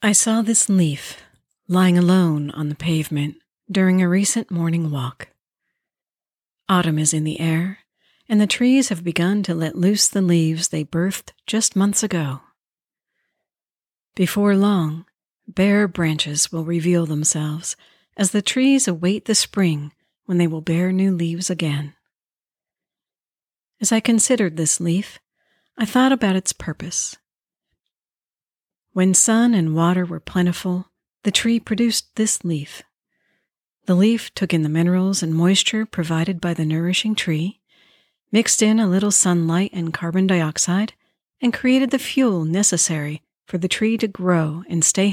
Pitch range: 165-210 Hz